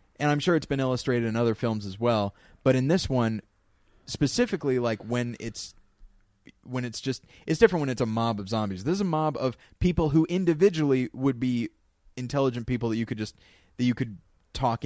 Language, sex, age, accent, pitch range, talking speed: English, male, 20-39, American, 100-125 Hz, 200 wpm